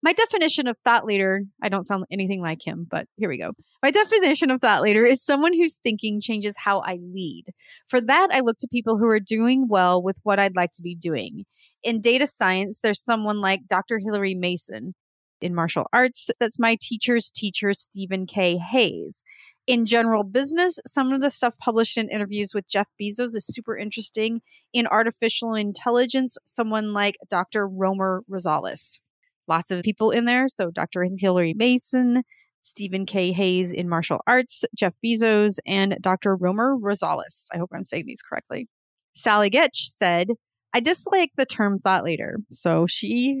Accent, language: American, English